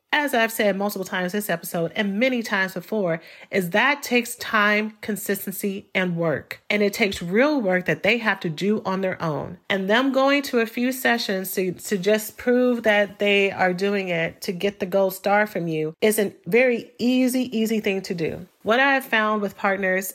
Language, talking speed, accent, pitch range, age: English, 205 wpm, American, 180-215 Hz, 40-59